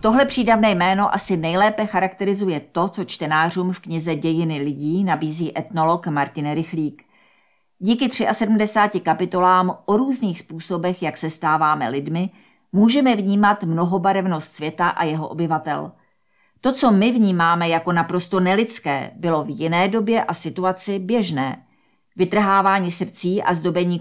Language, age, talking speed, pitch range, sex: Czech, 50-69, 130 wpm, 160-200 Hz, female